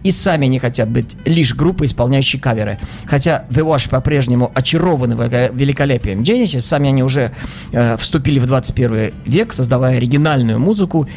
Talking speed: 145 wpm